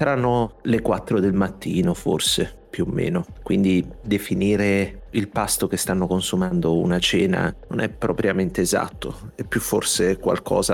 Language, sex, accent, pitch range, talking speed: Italian, male, native, 90-110 Hz, 145 wpm